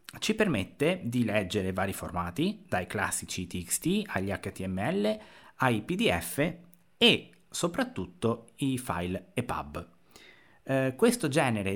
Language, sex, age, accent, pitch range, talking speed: Italian, male, 30-49, native, 100-150 Hz, 105 wpm